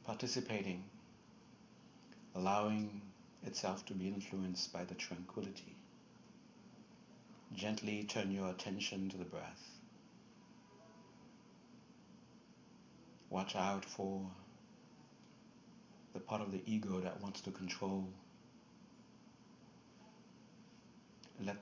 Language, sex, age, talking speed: English, male, 60-79, 80 wpm